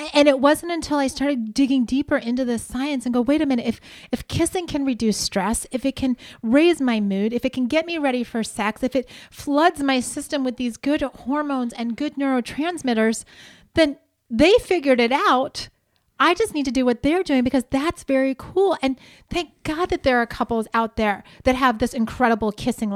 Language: English